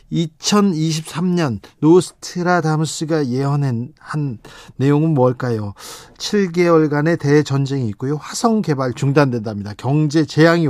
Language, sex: Korean, male